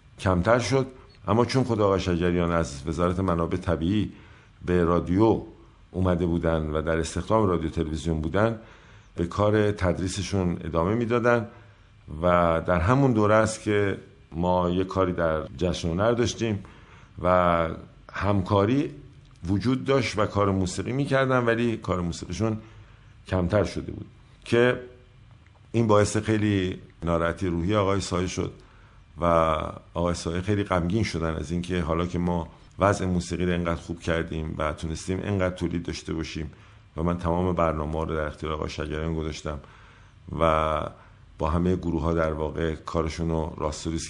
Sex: male